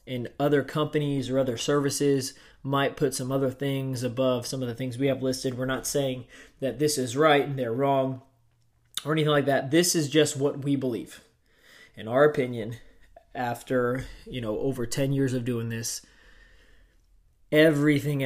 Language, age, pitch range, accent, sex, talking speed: English, 20-39, 125-145 Hz, American, male, 170 wpm